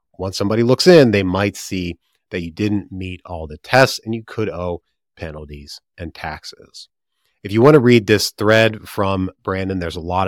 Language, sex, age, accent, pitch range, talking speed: English, male, 30-49, American, 90-115 Hz, 195 wpm